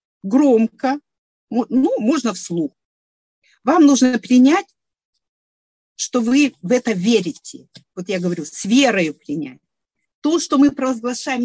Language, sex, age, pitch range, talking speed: Russian, female, 40-59, 200-275 Hz, 115 wpm